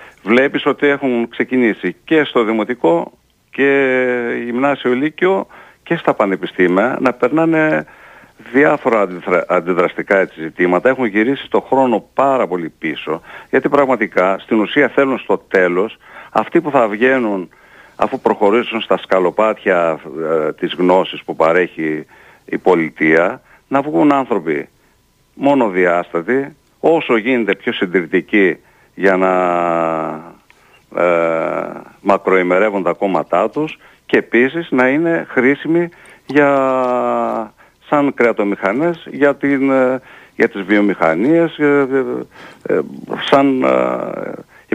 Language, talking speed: Greek, 105 wpm